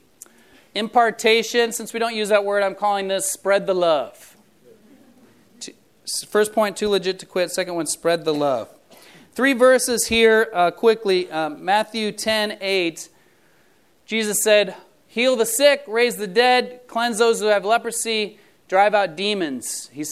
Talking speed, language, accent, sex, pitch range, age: 150 wpm, English, American, male, 180-235 Hz, 30-49